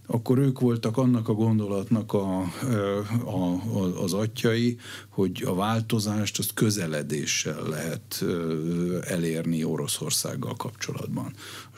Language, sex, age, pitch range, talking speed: Hungarian, male, 50-69, 90-120 Hz, 100 wpm